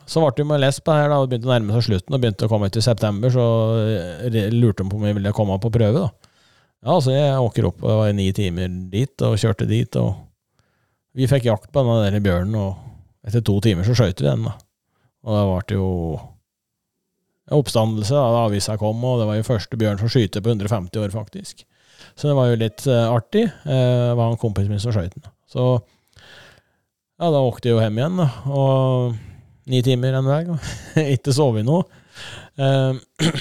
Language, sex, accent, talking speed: Swedish, male, Norwegian, 210 wpm